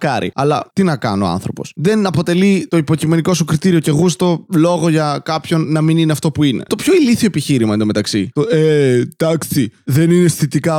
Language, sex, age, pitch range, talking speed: Greek, male, 20-39, 130-175 Hz, 195 wpm